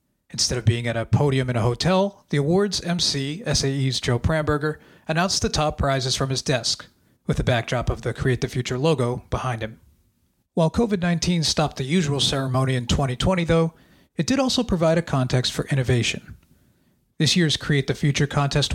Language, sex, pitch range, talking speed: English, male, 125-160 Hz, 180 wpm